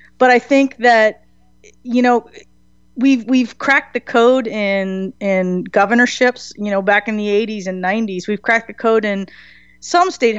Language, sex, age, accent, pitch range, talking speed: English, female, 30-49, American, 195-230 Hz, 165 wpm